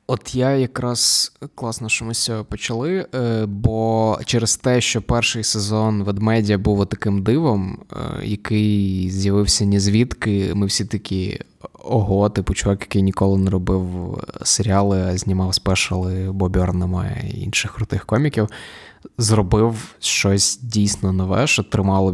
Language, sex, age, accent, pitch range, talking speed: Ukrainian, male, 20-39, native, 95-115 Hz, 125 wpm